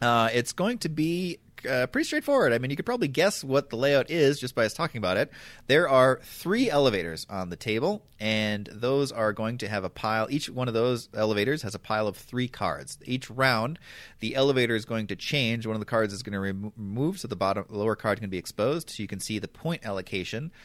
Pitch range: 100-135 Hz